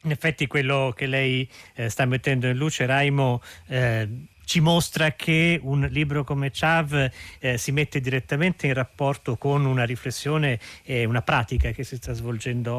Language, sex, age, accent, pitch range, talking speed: Italian, male, 40-59, native, 120-140 Hz, 165 wpm